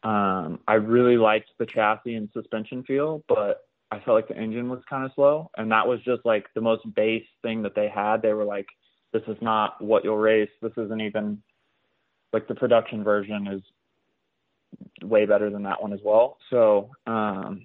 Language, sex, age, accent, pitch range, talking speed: English, male, 20-39, American, 105-120 Hz, 195 wpm